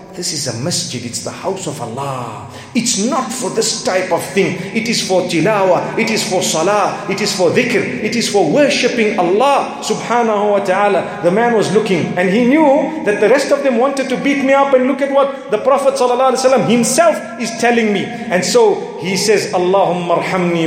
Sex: male